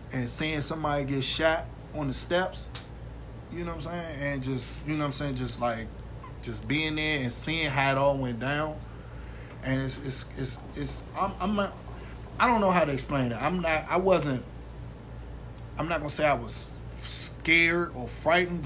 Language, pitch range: English, 130-155 Hz